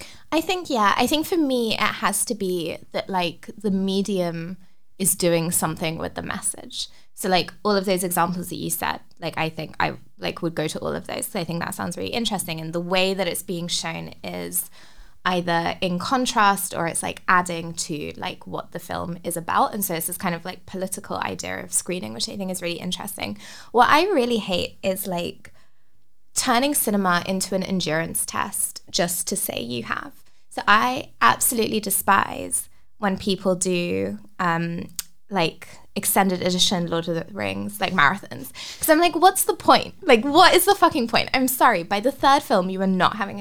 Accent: British